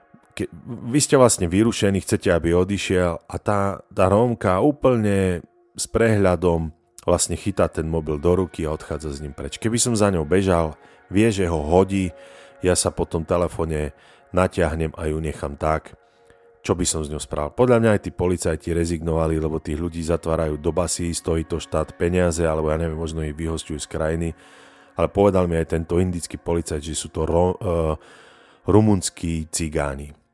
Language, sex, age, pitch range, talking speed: Slovak, male, 30-49, 80-100 Hz, 175 wpm